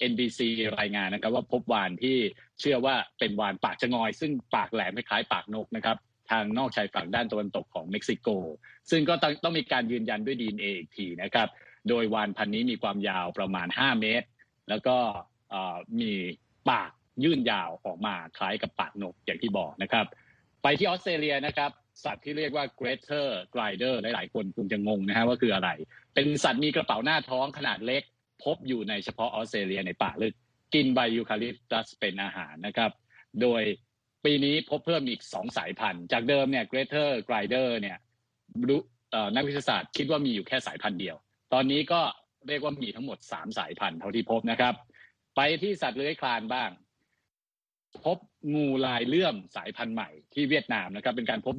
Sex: male